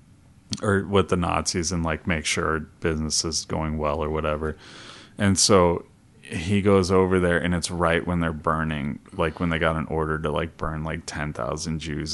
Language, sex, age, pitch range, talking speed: English, male, 30-49, 80-95 Hz, 190 wpm